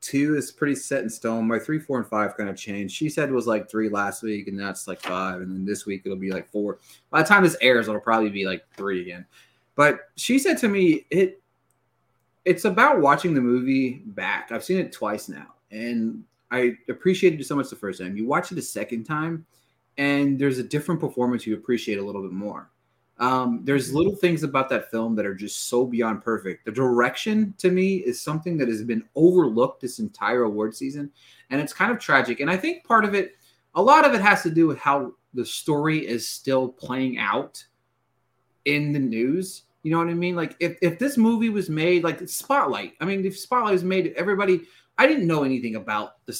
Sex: male